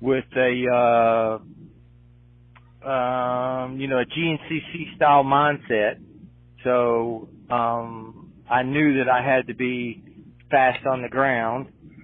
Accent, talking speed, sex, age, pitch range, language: American, 110 wpm, male, 40-59, 120-140 Hz, English